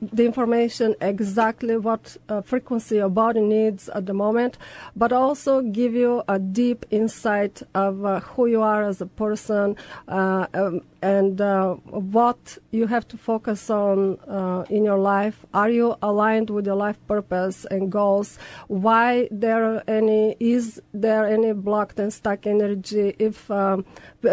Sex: female